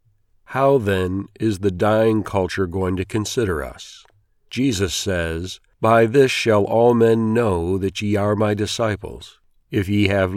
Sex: male